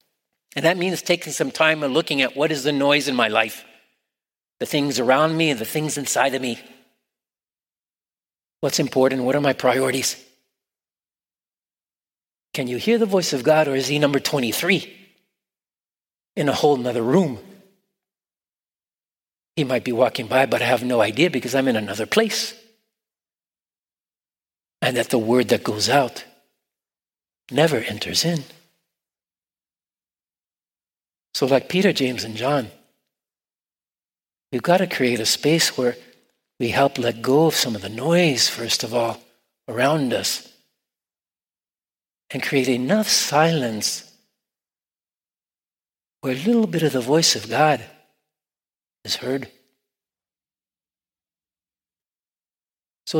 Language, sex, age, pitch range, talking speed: English, male, 40-59, 125-160 Hz, 130 wpm